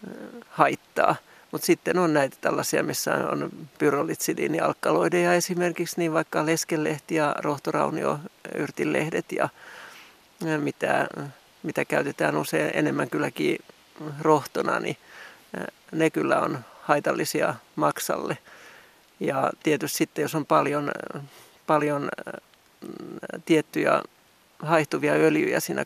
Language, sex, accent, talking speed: Finnish, male, native, 90 wpm